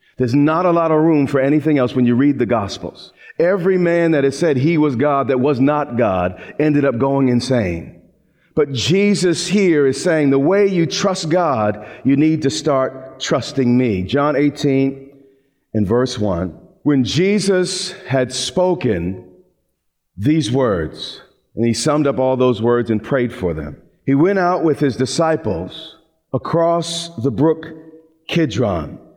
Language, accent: English, American